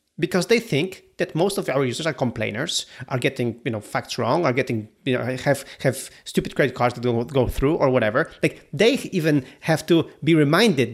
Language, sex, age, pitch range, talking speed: English, male, 30-49, 135-195 Hz, 205 wpm